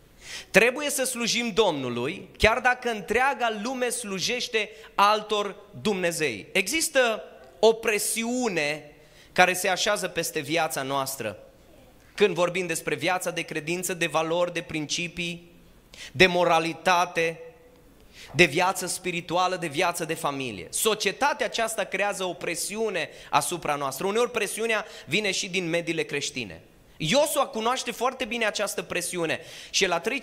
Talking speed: 125 wpm